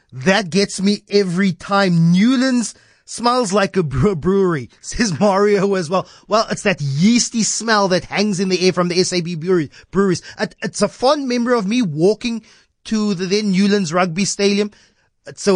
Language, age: English, 30-49